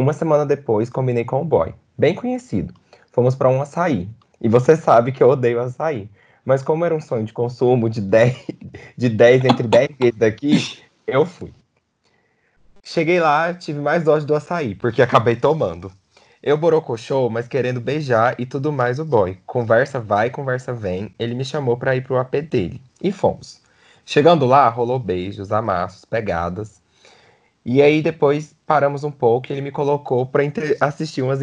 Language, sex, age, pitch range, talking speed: Portuguese, male, 20-39, 115-145 Hz, 170 wpm